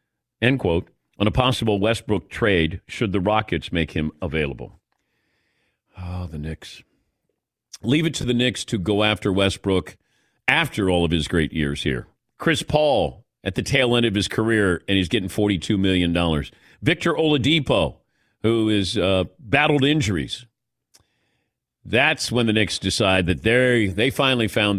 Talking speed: 155 wpm